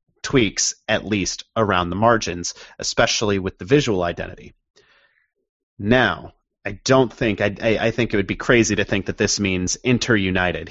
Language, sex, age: English, male, 30-49